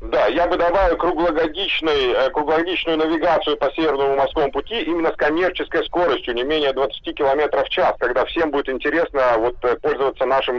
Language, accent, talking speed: Russian, native, 155 wpm